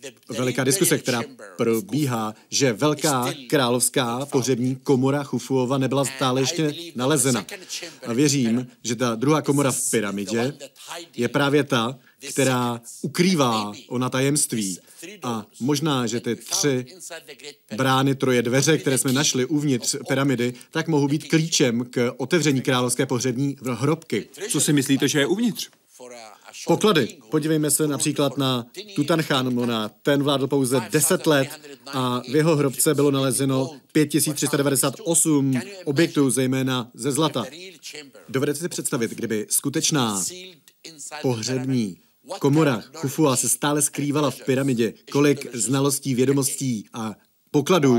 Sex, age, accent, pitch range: male, 40-59, native, 125-150 Hz